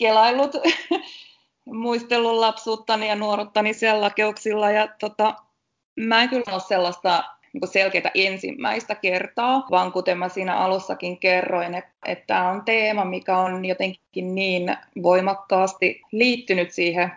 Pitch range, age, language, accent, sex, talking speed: 180-215 Hz, 20-39, Finnish, native, female, 120 wpm